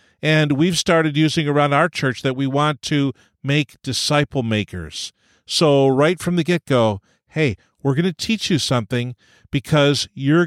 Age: 50-69